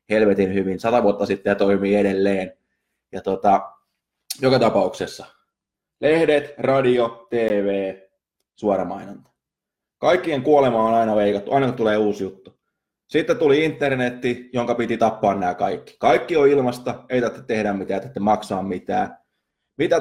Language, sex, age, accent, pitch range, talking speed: Finnish, male, 20-39, native, 100-135 Hz, 135 wpm